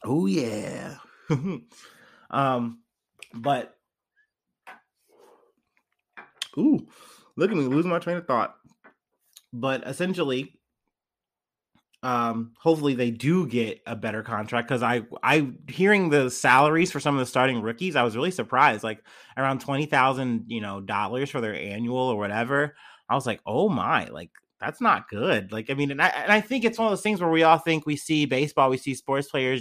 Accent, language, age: American, English, 30-49